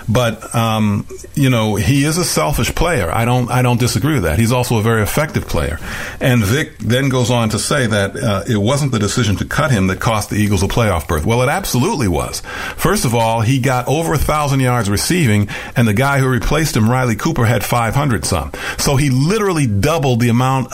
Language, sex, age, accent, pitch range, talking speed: English, male, 50-69, American, 110-150 Hz, 215 wpm